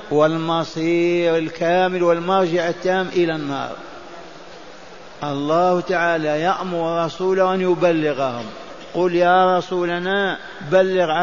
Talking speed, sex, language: 85 wpm, male, Arabic